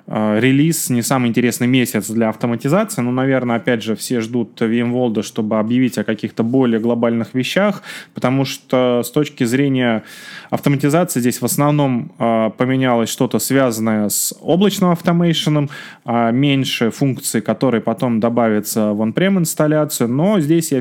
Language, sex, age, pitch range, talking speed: Russian, male, 20-39, 115-145 Hz, 140 wpm